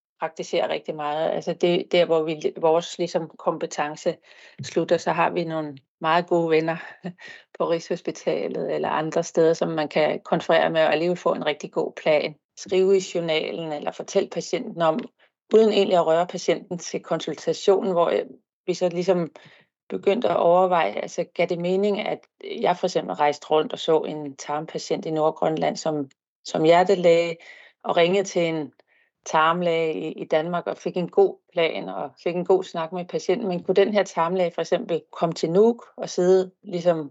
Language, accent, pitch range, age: Danish, native, 160-185 Hz, 30-49